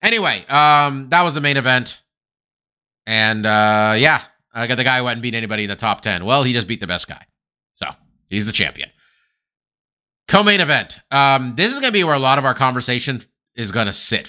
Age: 30-49